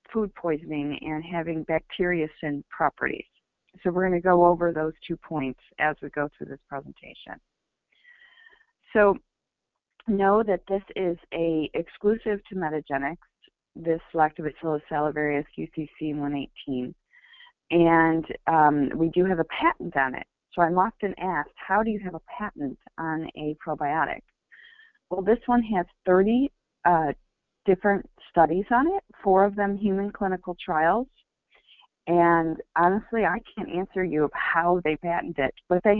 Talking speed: 140 wpm